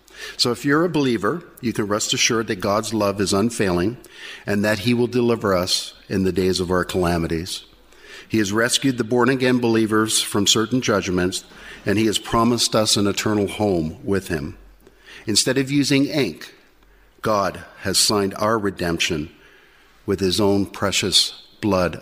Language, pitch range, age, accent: English, 90-115 Hz, 50-69, American